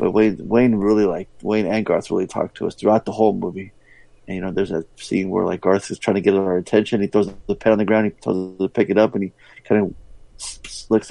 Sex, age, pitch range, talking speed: male, 30-49, 105-130 Hz, 270 wpm